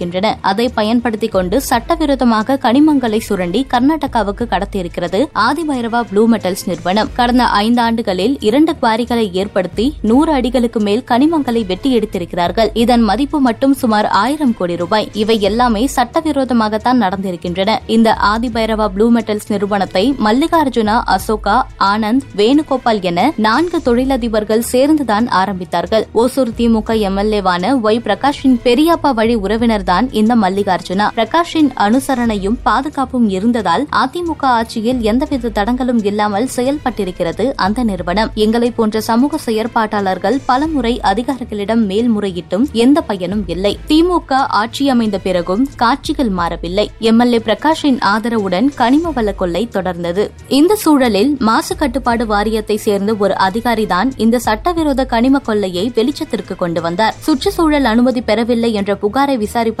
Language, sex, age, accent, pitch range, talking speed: Tamil, female, 20-39, native, 205-260 Hz, 110 wpm